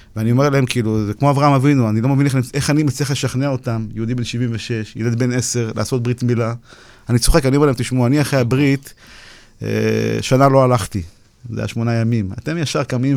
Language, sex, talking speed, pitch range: Hebrew, male, 205 wpm, 115-145 Hz